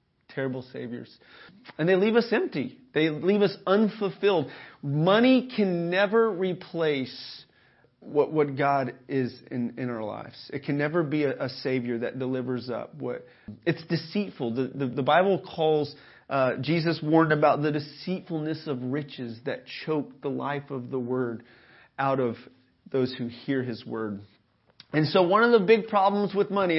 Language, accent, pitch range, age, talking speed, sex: English, American, 130-185 Hz, 30-49, 160 wpm, male